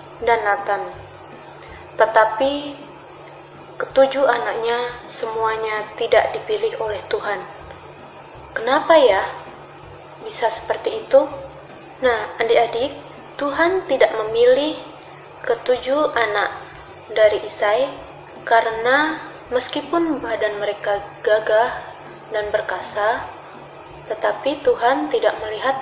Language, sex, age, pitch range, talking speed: Indonesian, female, 20-39, 215-290 Hz, 80 wpm